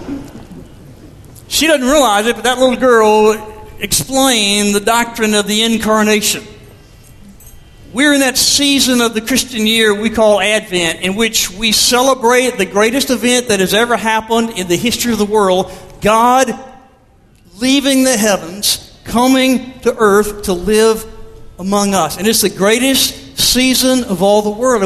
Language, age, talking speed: English, 50-69, 150 wpm